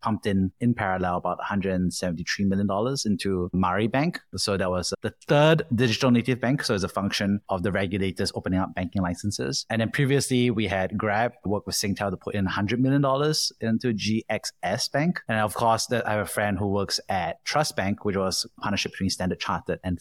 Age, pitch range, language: 30-49, 95-115 Hz, English